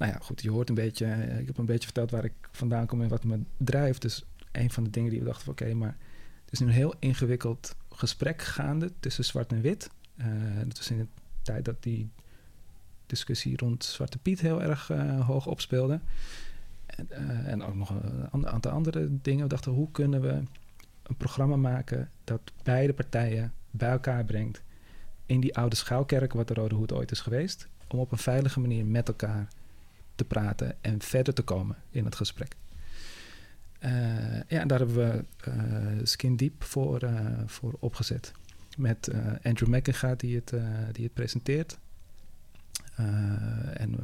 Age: 40-59